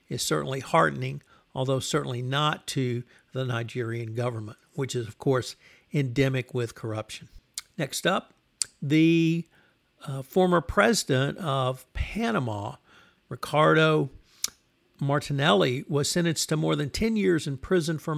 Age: 60-79